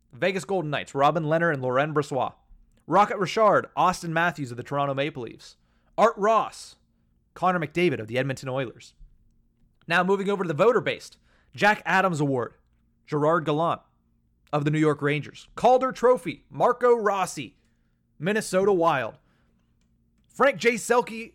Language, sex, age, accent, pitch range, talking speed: English, male, 30-49, American, 130-205 Hz, 140 wpm